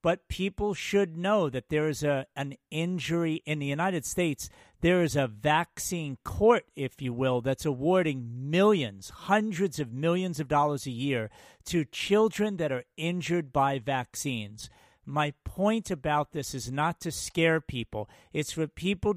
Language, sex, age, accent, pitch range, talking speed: English, male, 50-69, American, 140-190 Hz, 160 wpm